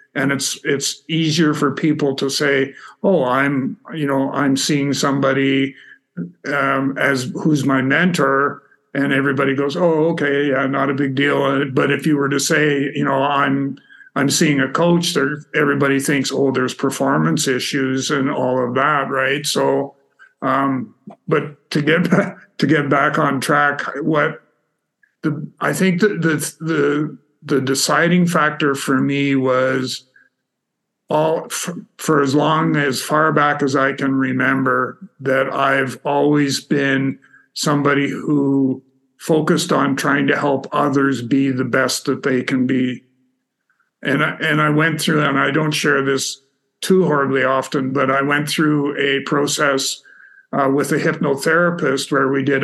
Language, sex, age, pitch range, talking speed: English, male, 50-69, 135-150 Hz, 155 wpm